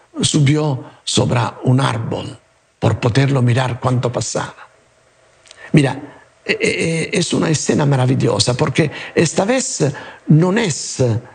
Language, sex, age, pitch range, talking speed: English, male, 60-79, 125-160 Hz, 100 wpm